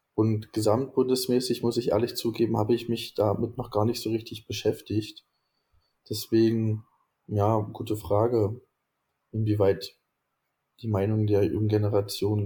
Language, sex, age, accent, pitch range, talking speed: German, male, 20-39, German, 105-115 Hz, 125 wpm